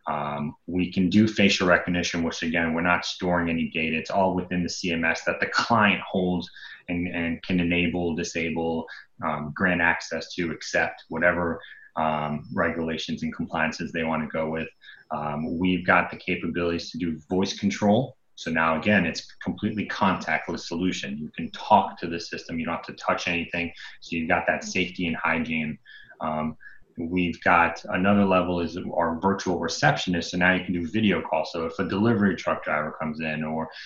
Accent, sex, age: American, male, 30-49